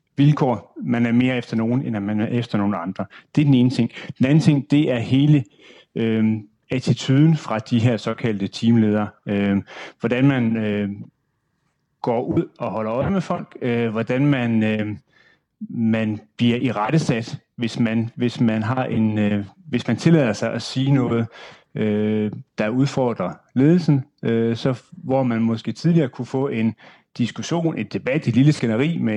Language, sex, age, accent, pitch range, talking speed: Danish, male, 30-49, native, 110-135 Hz, 170 wpm